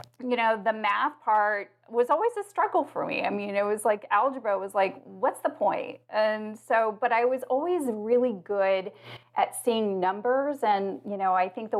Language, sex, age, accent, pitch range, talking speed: English, female, 30-49, American, 190-230 Hz, 200 wpm